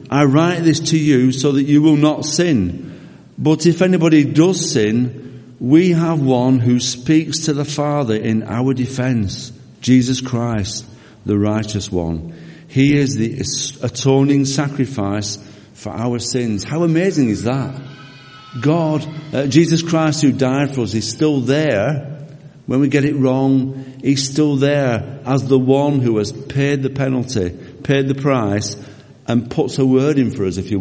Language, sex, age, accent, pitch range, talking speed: English, male, 50-69, British, 115-145 Hz, 160 wpm